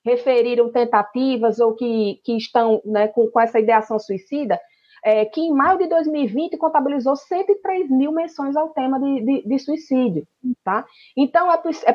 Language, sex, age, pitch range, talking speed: Portuguese, female, 20-39, 225-320 Hz, 150 wpm